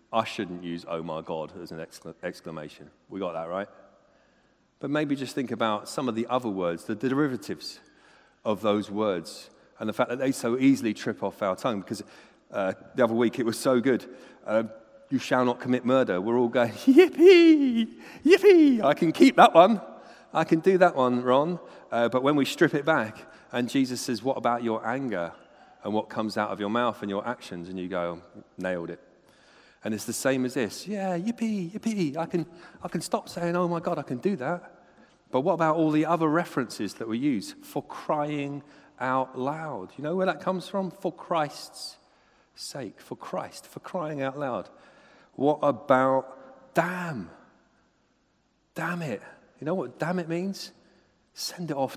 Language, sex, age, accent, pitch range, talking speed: English, male, 40-59, British, 120-180 Hz, 190 wpm